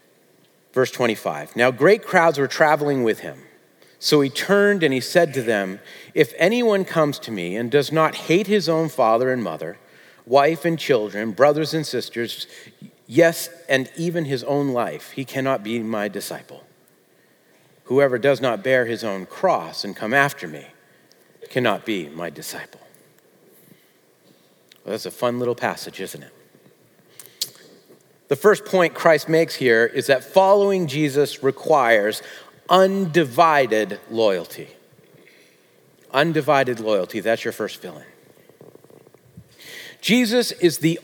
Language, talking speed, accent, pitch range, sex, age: English, 135 wpm, American, 125-175 Hz, male, 40-59